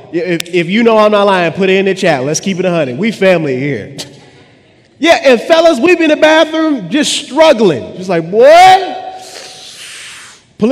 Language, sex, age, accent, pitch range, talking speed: English, male, 30-49, American, 185-295 Hz, 190 wpm